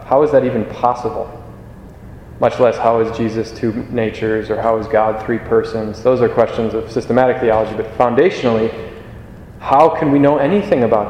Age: 20-39